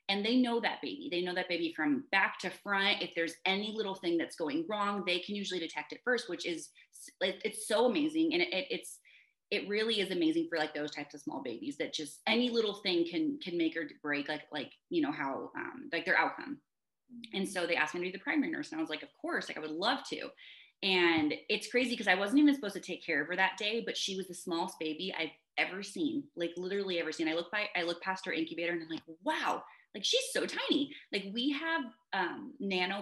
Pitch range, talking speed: 175-265 Hz, 250 wpm